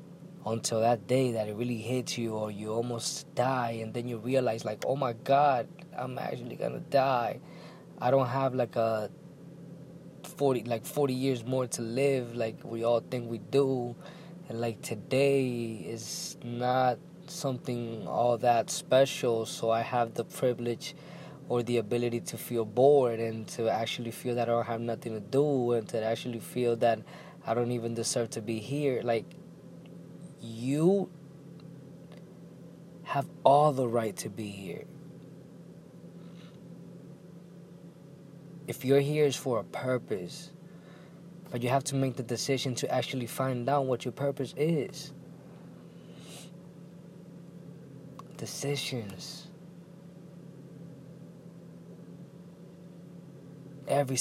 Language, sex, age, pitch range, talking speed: English, male, 20-39, 120-170 Hz, 130 wpm